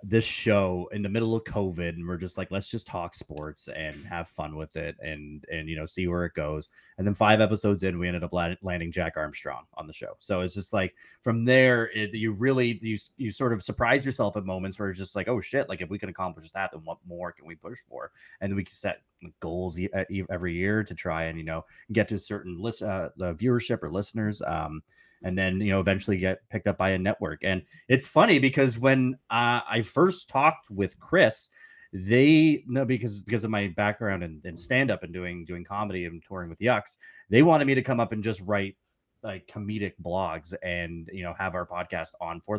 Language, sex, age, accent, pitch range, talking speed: English, male, 20-39, American, 90-110 Hz, 230 wpm